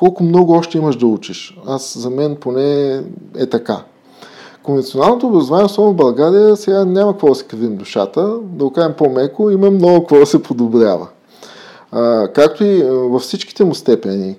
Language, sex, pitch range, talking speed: Bulgarian, male, 120-150 Hz, 165 wpm